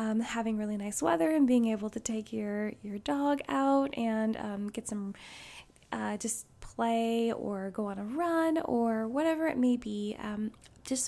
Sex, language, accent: female, English, American